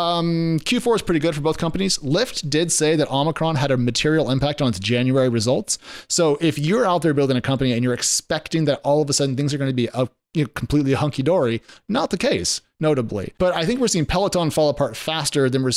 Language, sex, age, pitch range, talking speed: English, male, 30-49, 125-165 Hz, 235 wpm